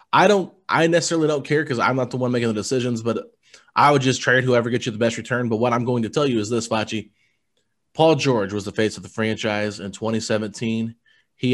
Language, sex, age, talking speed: English, male, 20-39, 240 wpm